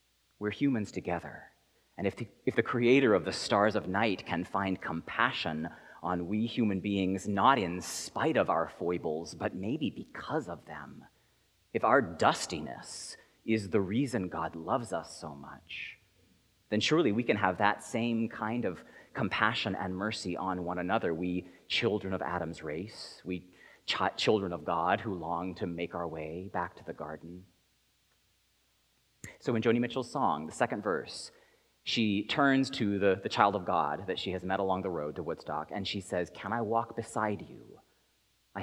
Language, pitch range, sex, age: English, 85-115 Hz, male, 30-49